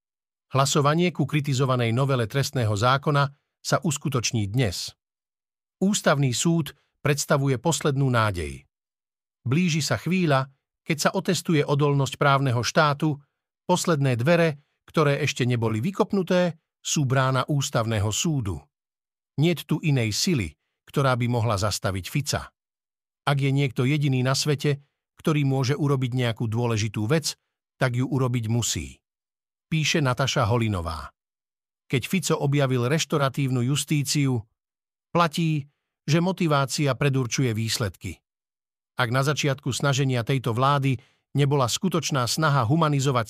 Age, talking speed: 50-69, 110 wpm